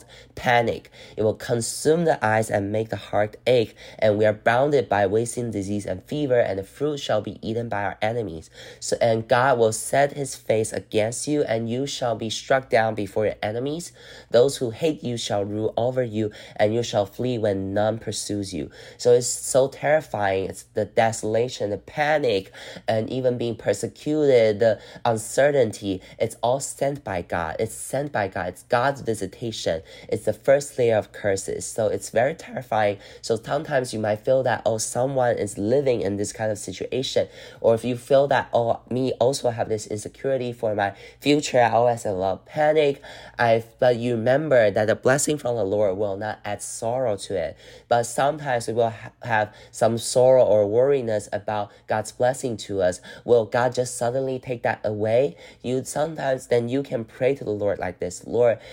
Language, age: English, 20-39